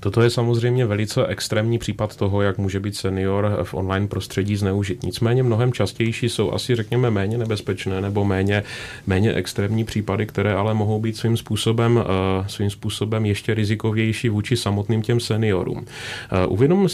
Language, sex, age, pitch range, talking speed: Czech, male, 30-49, 100-120 Hz, 150 wpm